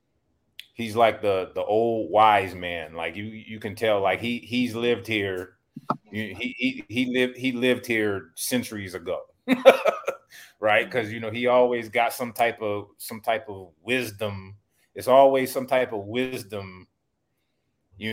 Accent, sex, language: American, male, English